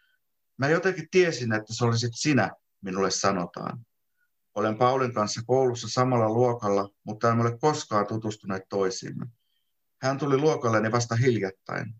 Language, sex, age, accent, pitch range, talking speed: Finnish, male, 50-69, native, 100-125 Hz, 130 wpm